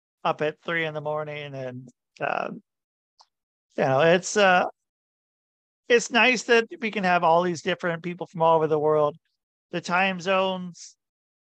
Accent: American